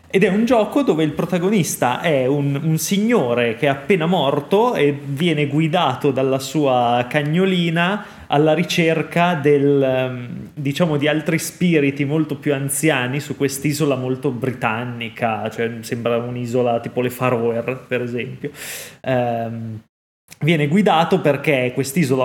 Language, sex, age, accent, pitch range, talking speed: Italian, male, 20-39, native, 125-160 Hz, 130 wpm